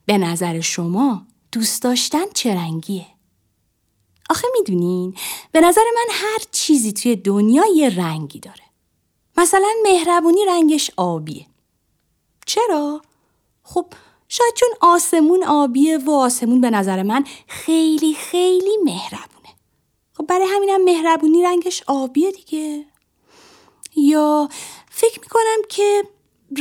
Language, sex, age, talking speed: Persian, female, 30-49, 105 wpm